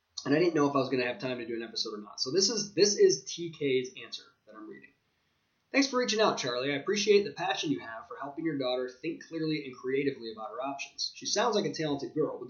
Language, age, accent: English, 20-39, American